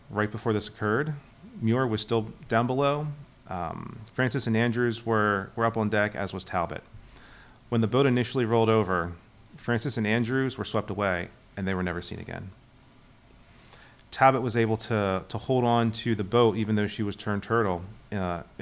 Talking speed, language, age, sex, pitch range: 180 wpm, English, 30-49, male, 95-120 Hz